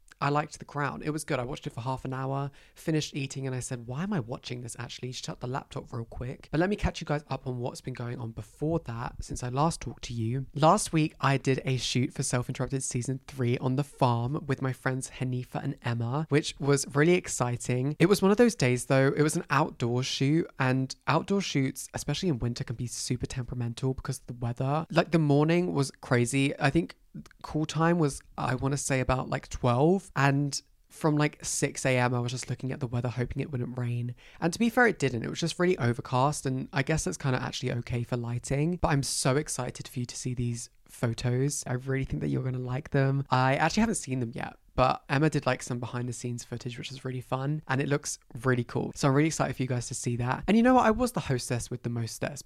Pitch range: 125-155 Hz